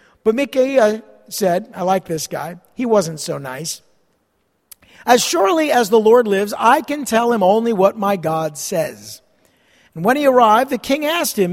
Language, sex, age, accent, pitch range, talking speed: English, male, 50-69, American, 190-255 Hz, 175 wpm